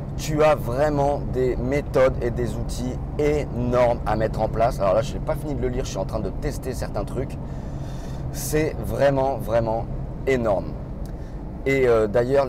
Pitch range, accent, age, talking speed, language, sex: 100-130 Hz, French, 30-49, 180 wpm, French, male